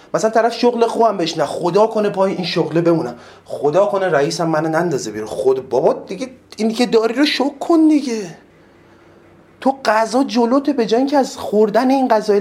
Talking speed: 175 wpm